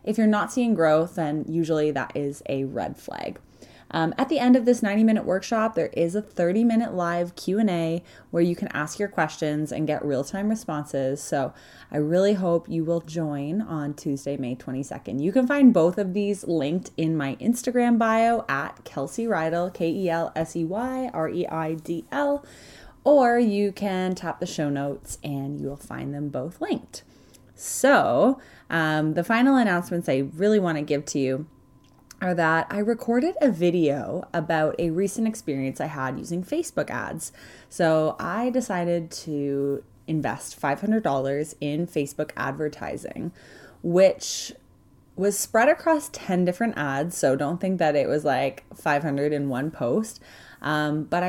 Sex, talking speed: female, 155 wpm